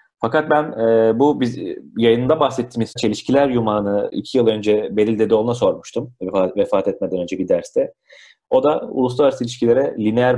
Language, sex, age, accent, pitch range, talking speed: Turkish, male, 40-59, native, 100-130 Hz, 145 wpm